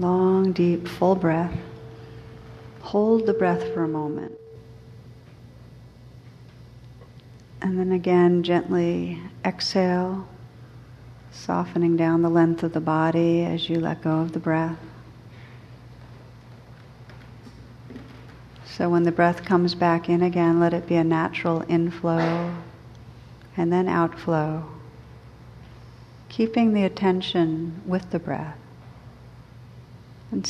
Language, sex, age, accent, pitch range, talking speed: English, female, 50-69, American, 120-170 Hz, 105 wpm